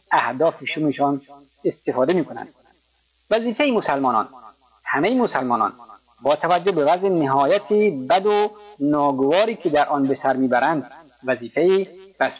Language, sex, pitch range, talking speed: Persian, male, 135-180 Hz, 110 wpm